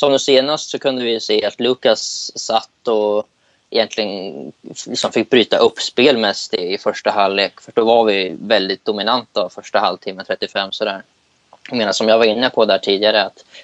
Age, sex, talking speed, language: 20-39, male, 190 wpm, Swedish